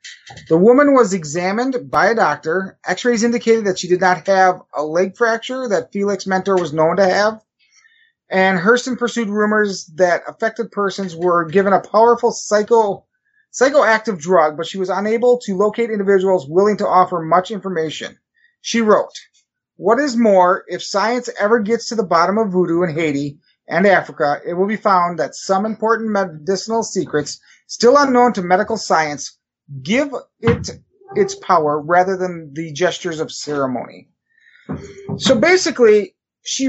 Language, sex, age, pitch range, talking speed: English, male, 30-49, 180-230 Hz, 155 wpm